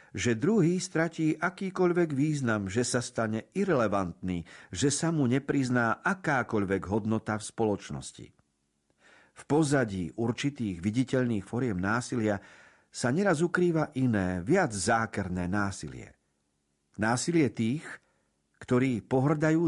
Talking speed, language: 105 wpm, Slovak